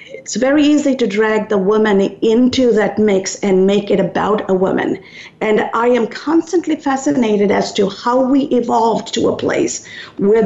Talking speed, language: 170 wpm, English